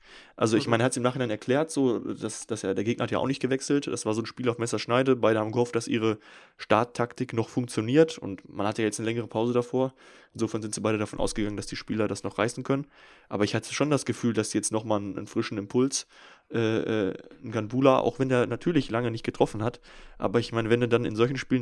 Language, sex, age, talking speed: German, male, 10-29, 255 wpm